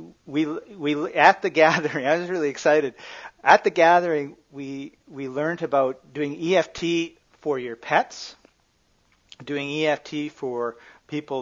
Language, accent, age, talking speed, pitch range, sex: English, American, 40-59, 130 wpm, 115-140 Hz, male